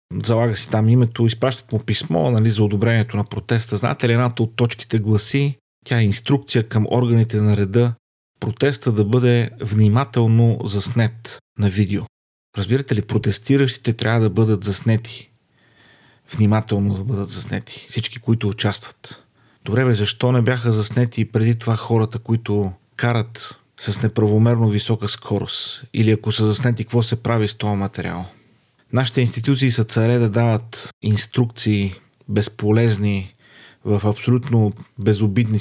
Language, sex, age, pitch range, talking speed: Bulgarian, male, 40-59, 105-120 Hz, 140 wpm